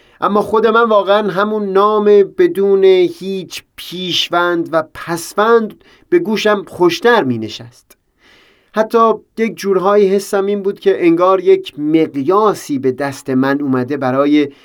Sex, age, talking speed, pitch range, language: male, 30-49, 125 wpm, 140-190 Hz, Persian